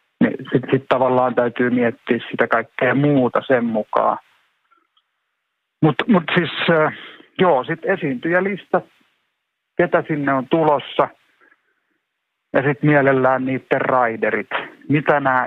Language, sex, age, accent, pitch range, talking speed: Finnish, male, 50-69, native, 115-135 Hz, 110 wpm